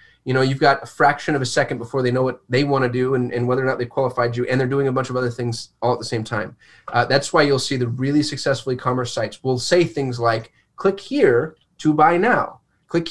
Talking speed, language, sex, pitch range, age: 265 wpm, English, male, 125-150 Hz, 20-39